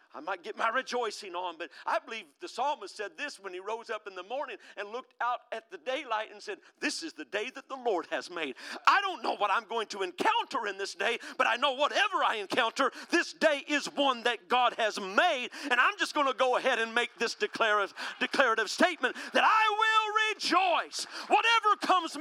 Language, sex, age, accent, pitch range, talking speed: English, male, 50-69, American, 240-360 Hz, 215 wpm